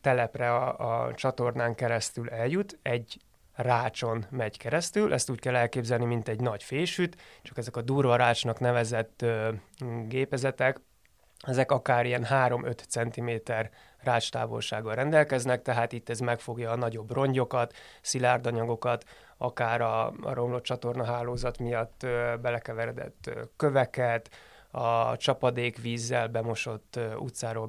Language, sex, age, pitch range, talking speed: Hungarian, male, 20-39, 115-130 Hz, 115 wpm